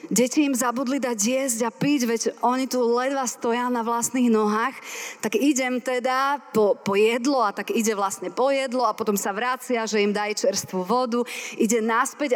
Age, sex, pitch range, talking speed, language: 30-49, female, 220-265 Hz, 185 wpm, Slovak